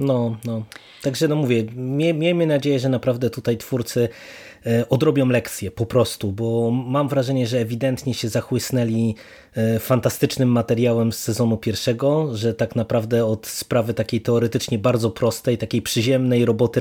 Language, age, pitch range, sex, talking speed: Polish, 20-39, 115-140 Hz, male, 140 wpm